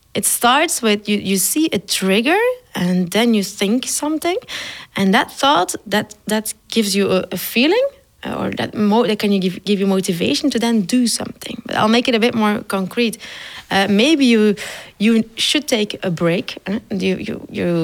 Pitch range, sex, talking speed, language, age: 195-255 Hz, female, 195 wpm, Dutch, 30-49